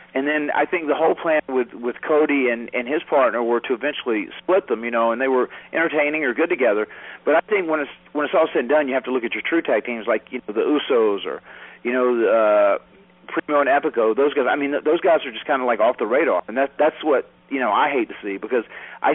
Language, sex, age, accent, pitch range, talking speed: English, male, 40-59, American, 115-145 Hz, 275 wpm